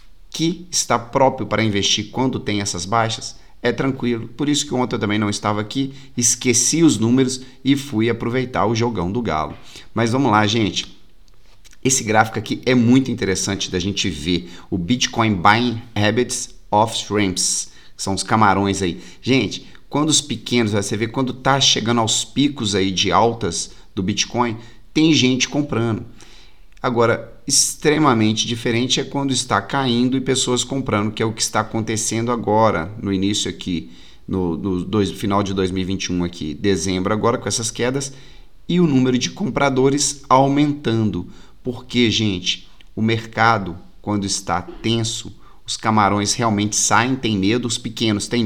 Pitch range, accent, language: 100-125 Hz, Brazilian, Portuguese